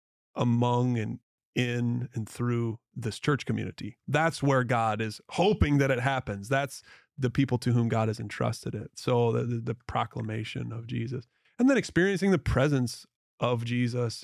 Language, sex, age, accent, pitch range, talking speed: English, male, 30-49, American, 115-130 Hz, 165 wpm